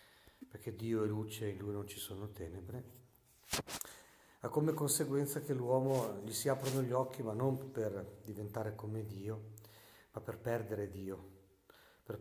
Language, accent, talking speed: Italian, native, 155 wpm